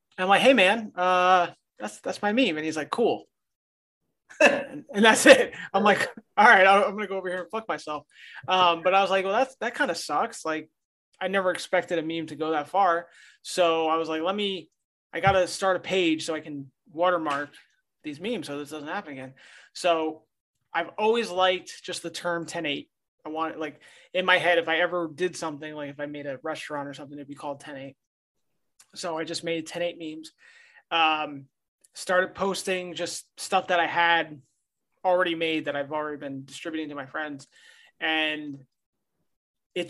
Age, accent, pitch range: 20-39, American, 150-185 Hz